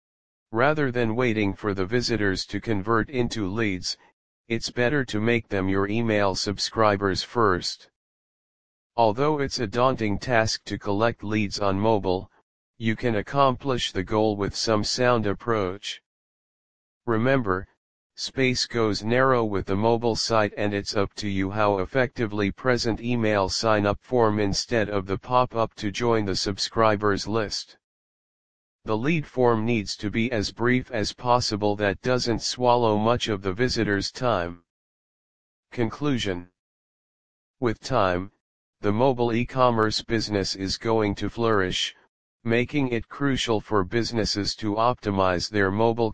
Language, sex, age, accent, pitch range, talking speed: English, male, 40-59, American, 100-120 Hz, 135 wpm